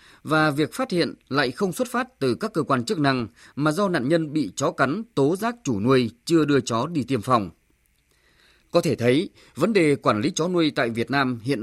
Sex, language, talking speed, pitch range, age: male, Vietnamese, 225 wpm, 125-170 Hz, 20-39